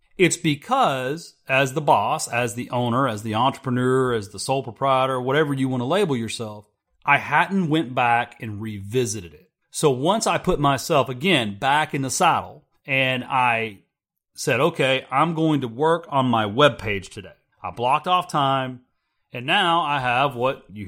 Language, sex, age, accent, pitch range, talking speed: English, male, 30-49, American, 125-160 Hz, 175 wpm